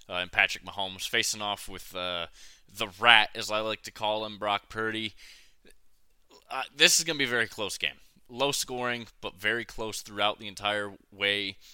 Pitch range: 95-115 Hz